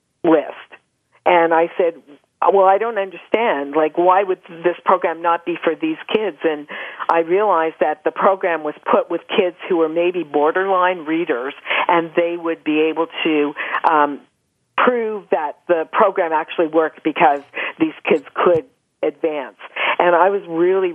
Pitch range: 140-175 Hz